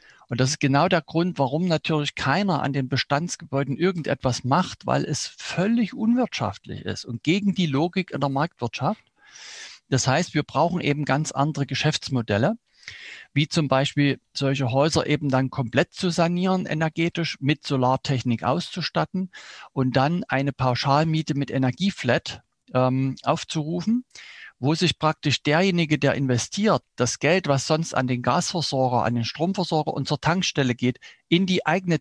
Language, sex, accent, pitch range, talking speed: German, male, German, 130-165 Hz, 145 wpm